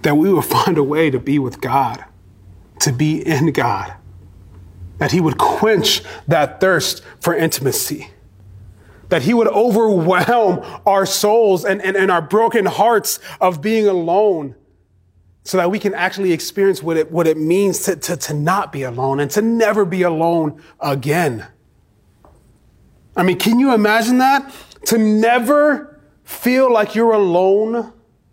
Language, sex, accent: English, male, American